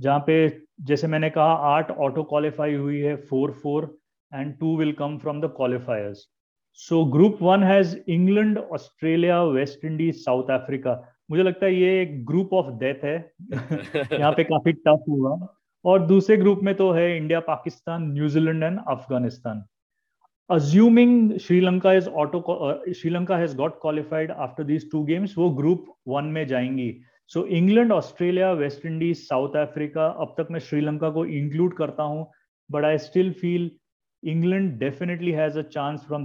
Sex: male